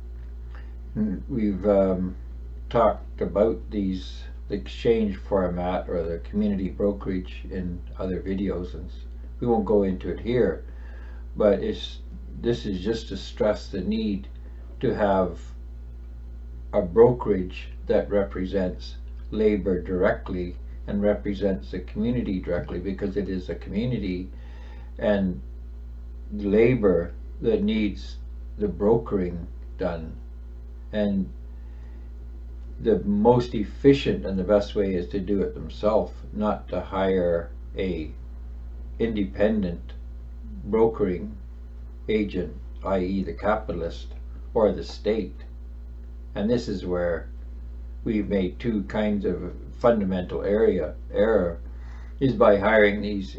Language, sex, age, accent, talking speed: English, male, 60-79, American, 110 wpm